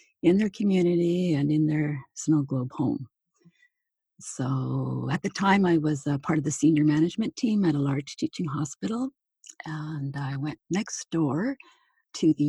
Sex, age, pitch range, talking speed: female, 50-69, 140-185 Hz, 165 wpm